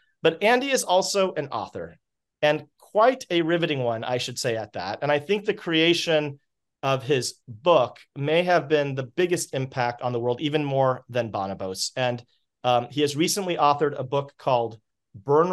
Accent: American